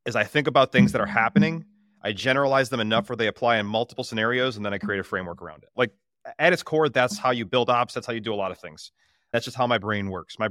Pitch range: 110-135 Hz